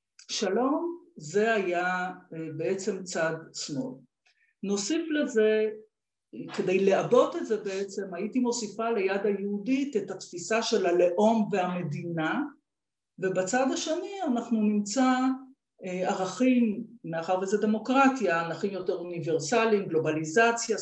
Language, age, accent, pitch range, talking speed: Hebrew, 50-69, native, 180-235 Hz, 100 wpm